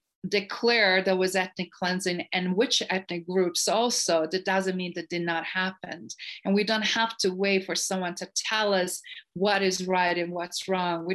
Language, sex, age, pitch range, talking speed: English, female, 40-59, 175-200 Hz, 190 wpm